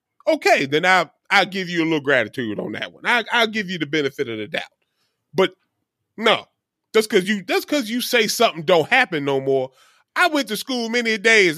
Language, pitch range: English, 160-240 Hz